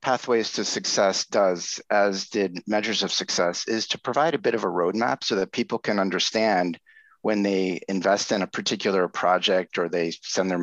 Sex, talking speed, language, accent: male, 185 wpm, English, American